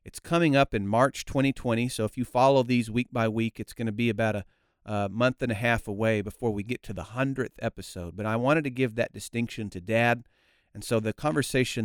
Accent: American